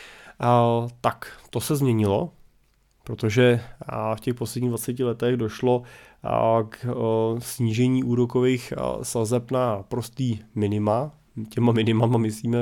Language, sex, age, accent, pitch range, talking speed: Czech, male, 20-39, native, 110-125 Hz, 100 wpm